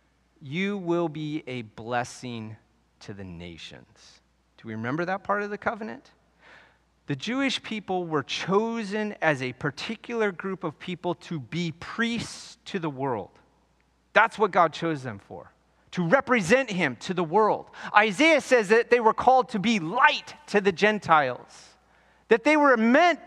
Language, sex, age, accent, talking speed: English, male, 40-59, American, 155 wpm